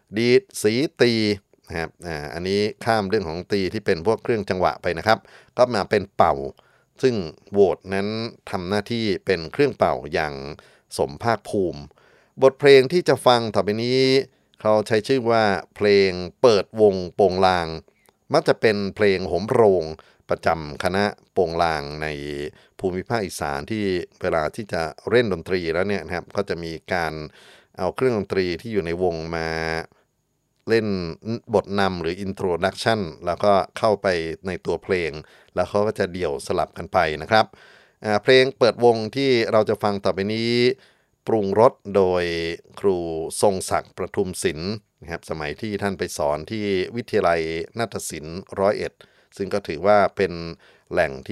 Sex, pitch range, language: male, 85-110 Hz, Thai